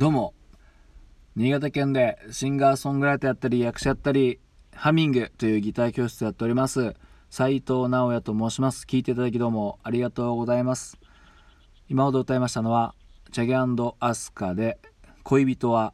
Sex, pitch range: male, 95-125 Hz